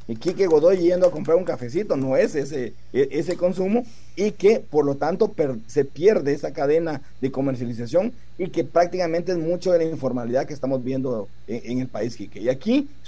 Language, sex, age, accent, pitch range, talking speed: Spanish, male, 50-69, Mexican, 125-175 Hz, 200 wpm